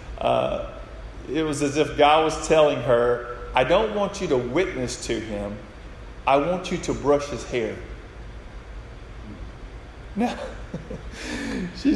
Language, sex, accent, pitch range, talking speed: English, male, American, 135-185 Hz, 130 wpm